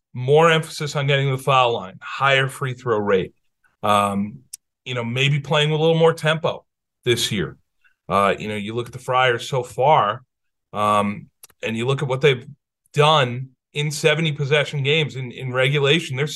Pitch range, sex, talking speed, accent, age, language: 125-155 Hz, male, 180 wpm, American, 40-59, English